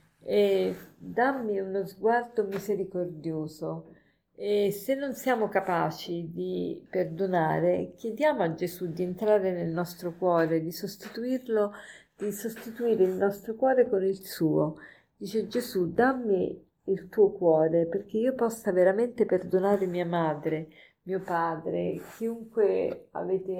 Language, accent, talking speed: Italian, native, 120 wpm